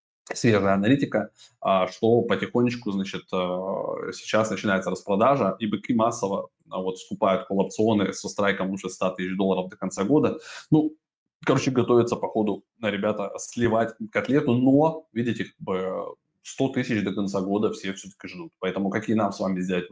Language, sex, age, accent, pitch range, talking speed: Russian, male, 20-39, native, 95-125 Hz, 140 wpm